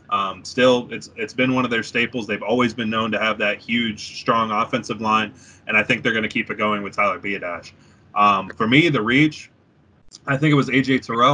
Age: 20-39